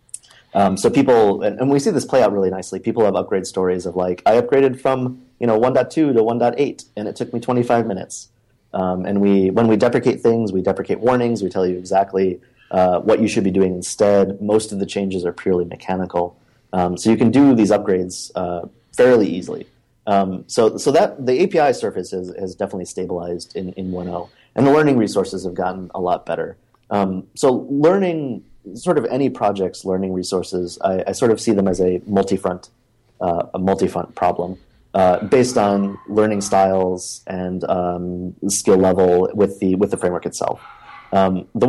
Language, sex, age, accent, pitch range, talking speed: English, male, 30-49, American, 90-115 Hz, 190 wpm